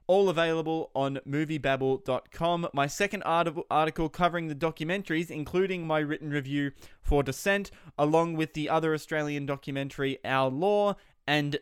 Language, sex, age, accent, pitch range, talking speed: English, male, 20-39, Australian, 130-170 Hz, 130 wpm